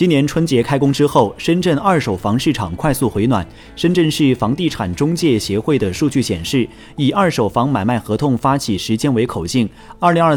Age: 30-49